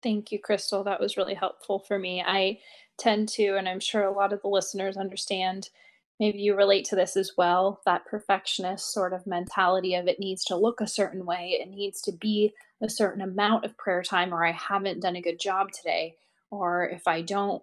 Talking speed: 215 wpm